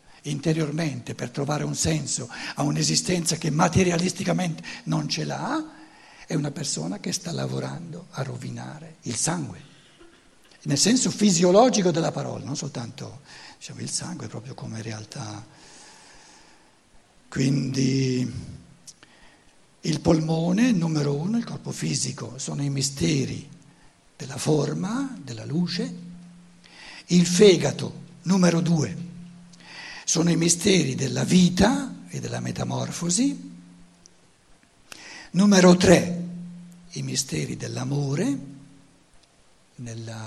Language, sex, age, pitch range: Italian, male, 60-79, 125-175 Hz